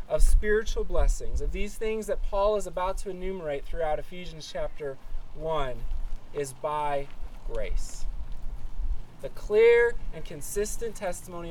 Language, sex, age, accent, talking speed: English, male, 20-39, American, 125 wpm